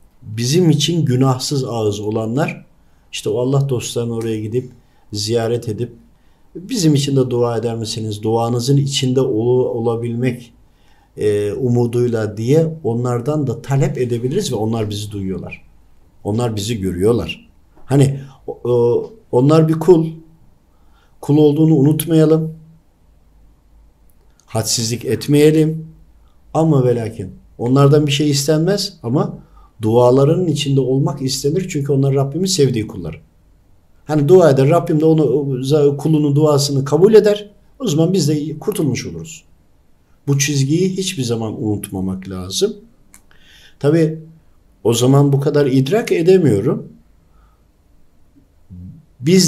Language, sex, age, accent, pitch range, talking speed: Turkish, male, 50-69, native, 105-150 Hz, 110 wpm